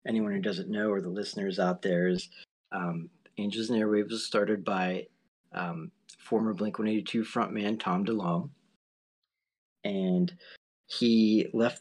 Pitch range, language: 95-115 Hz, English